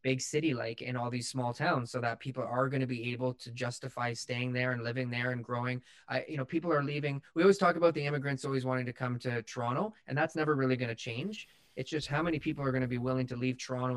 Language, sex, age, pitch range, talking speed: English, male, 20-39, 120-140 Hz, 270 wpm